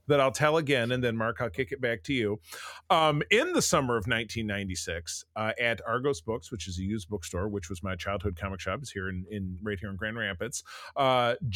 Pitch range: 105-145 Hz